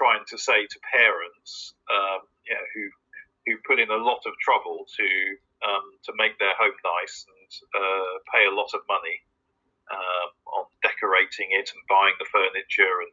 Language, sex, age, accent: Chinese, male, 40-59, British